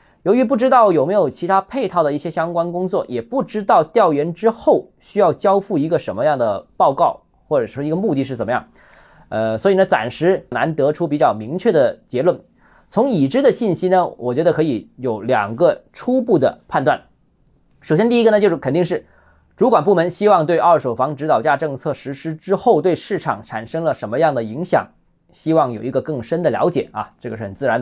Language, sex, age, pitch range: Chinese, male, 20-39, 145-225 Hz